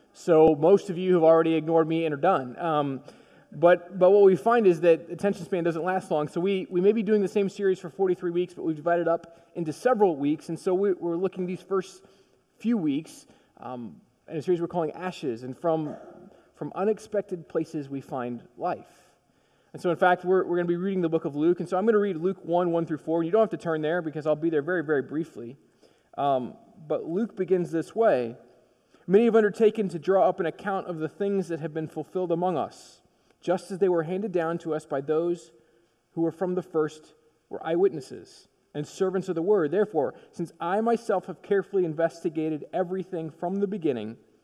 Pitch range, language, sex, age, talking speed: 160-190 Hz, English, male, 20-39, 220 wpm